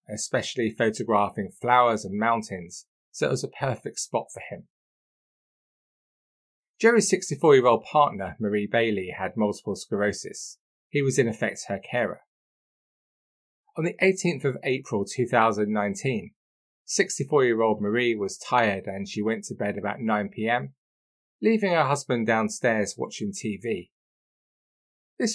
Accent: British